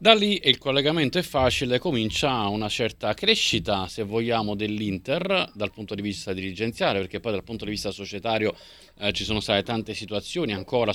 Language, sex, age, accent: Italian, male, 30-49, native